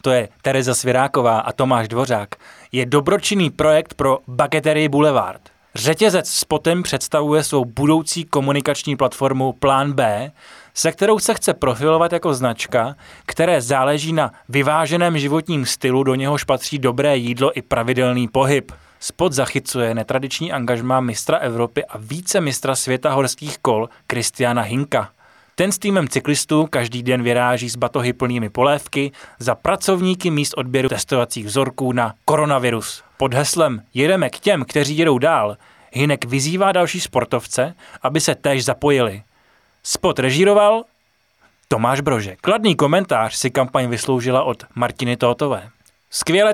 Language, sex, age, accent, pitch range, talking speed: Czech, male, 20-39, native, 125-155 Hz, 135 wpm